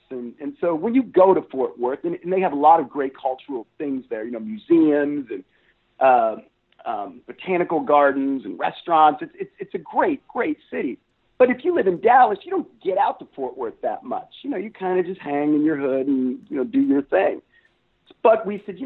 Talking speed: 230 wpm